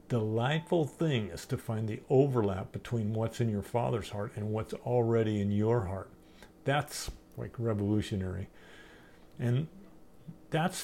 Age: 50-69